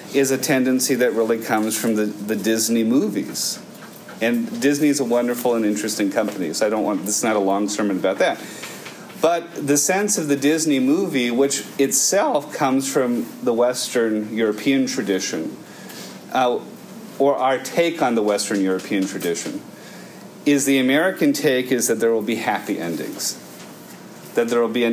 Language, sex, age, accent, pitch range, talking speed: English, male, 40-59, American, 105-140 Hz, 170 wpm